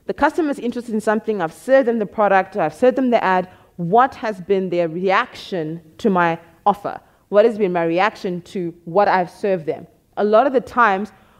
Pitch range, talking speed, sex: 175-225 Hz, 200 wpm, female